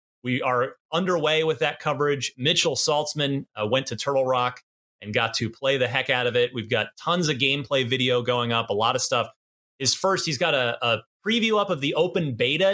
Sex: male